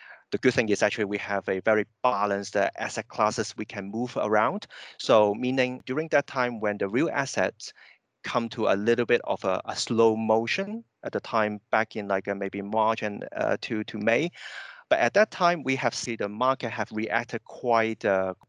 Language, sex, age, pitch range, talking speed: English, male, 30-49, 95-115 Hz, 200 wpm